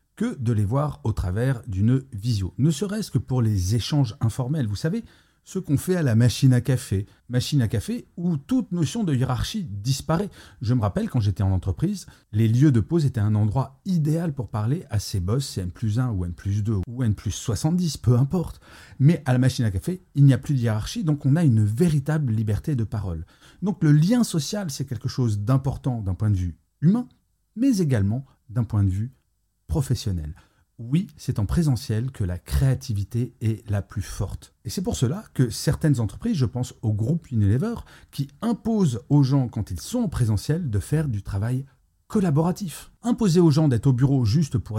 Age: 40-59